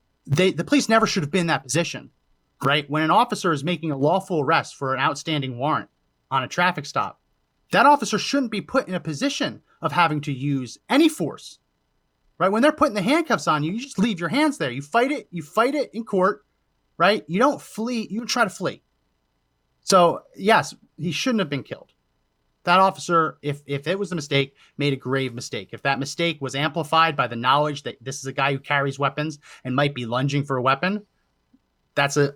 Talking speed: 215 wpm